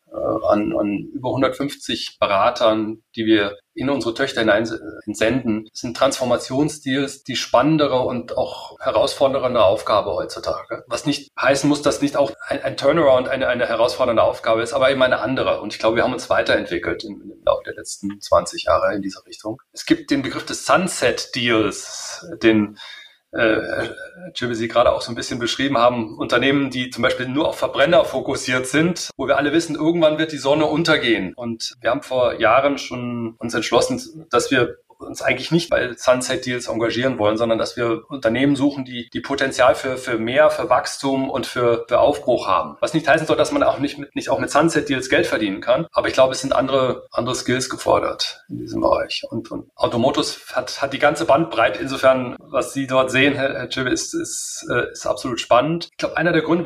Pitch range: 120-155 Hz